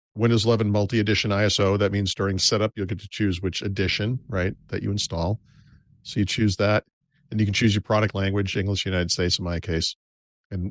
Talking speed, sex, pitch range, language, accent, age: 200 wpm, male, 95-115 Hz, English, American, 50-69